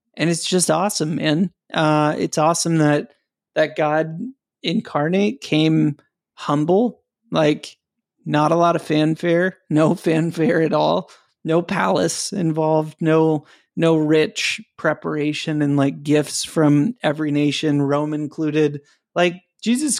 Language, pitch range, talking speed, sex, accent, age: English, 150-175 Hz, 125 wpm, male, American, 30-49